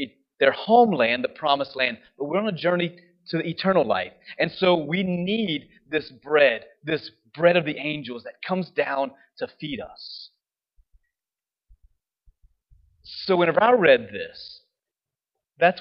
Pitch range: 145-205 Hz